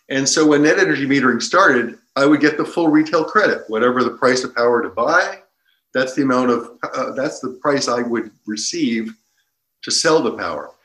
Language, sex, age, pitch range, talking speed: English, male, 50-69, 110-155 Hz, 200 wpm